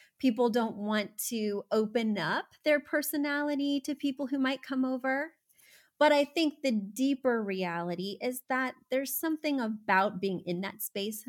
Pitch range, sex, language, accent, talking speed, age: 195-265 Hz, female, English, American, 155 wpm, 30-49